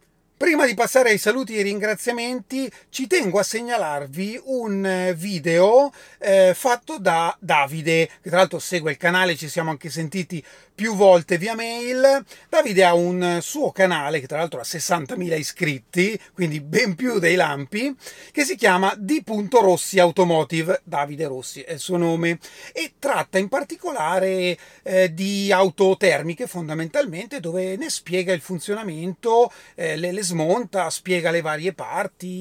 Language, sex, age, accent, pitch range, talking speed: Italian, male, 30-49, native, 170-225 Hz, 150 wpm